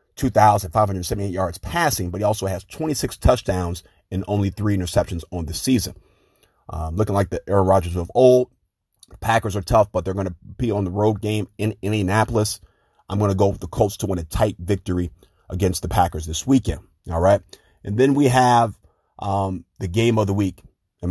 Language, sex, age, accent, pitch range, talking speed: English, male, 30-49, American, 90-110 Hz, 195 wpm